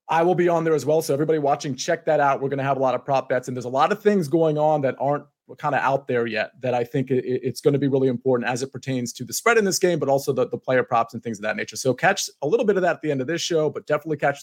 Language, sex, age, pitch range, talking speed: English, male, 30-49, 130-160 Hz, 340 wpm